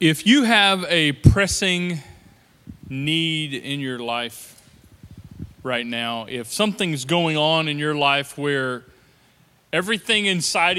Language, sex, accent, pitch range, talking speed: English, male, American, 130-175 Hz, 115 wpm